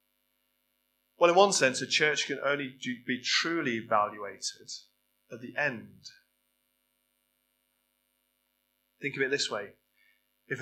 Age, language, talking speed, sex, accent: 30-49, English, 115 wpm, male, British